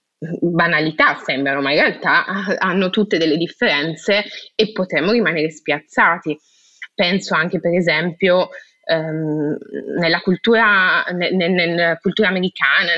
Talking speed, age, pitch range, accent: 115 wpm, 20-39, 165-200 Hz, native